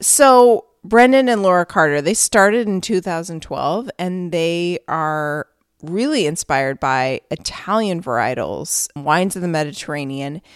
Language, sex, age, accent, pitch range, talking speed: English, female, 30-49, American, 145-185 Hz, 120 wpm